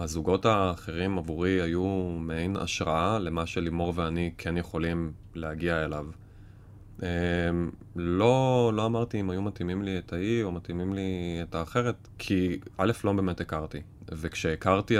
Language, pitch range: Hebrew, 85-100 Hz